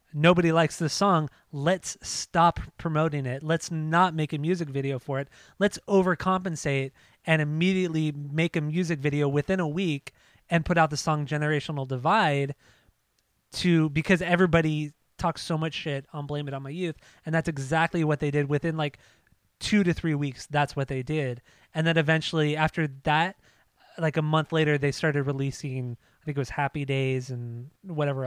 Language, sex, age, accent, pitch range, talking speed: English, male, 20-39, American, 140-170 Hz, 175 wpm